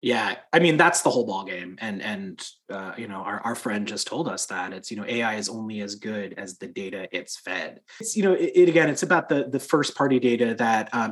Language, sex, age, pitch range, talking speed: English, male, 30-49, 105-125 Hz, 260 wpm